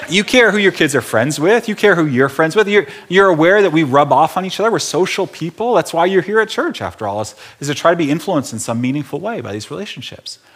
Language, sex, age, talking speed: English, male, 30-49, 280 wpm